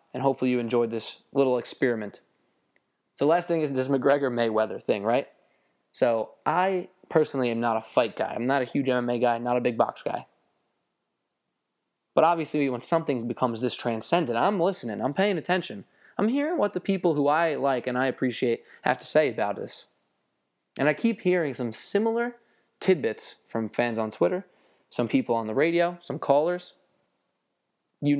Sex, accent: male, American